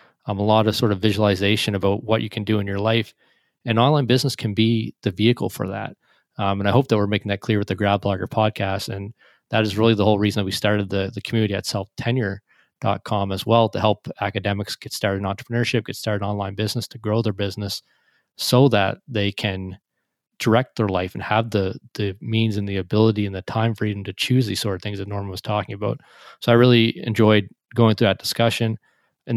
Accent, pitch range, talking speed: American, 100-115 Hz, 225 wpm